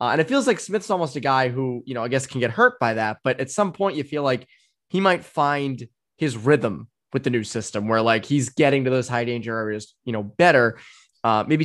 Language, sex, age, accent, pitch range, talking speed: English, male, 20-39, American, 125-155 Hz, 250 wpm